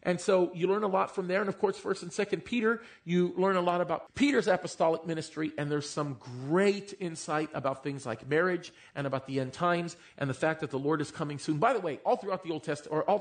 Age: 40-59